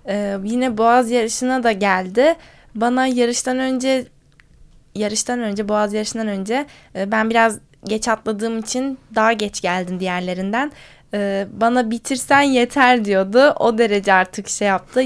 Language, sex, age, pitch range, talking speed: Turkish, female, 10-29, 205-255 Hz, 135 wpm